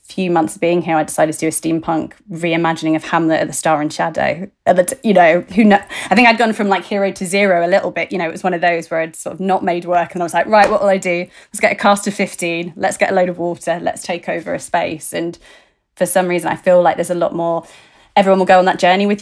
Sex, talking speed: female, 300 wpm